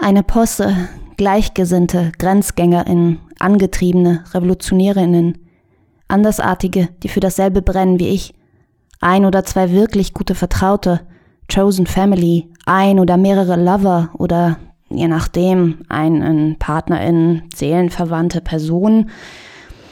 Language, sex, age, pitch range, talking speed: German, female, 20-39, 170-200 Hz, 100 wpm